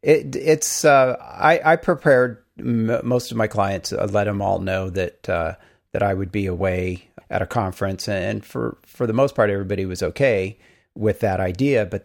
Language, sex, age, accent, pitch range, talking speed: English, male, 40-59, American, 95-110 Hz, 195 wpm